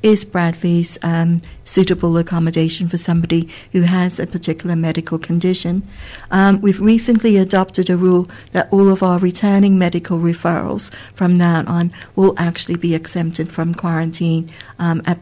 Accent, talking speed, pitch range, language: British, 140 wpm, 170-195 Hz, English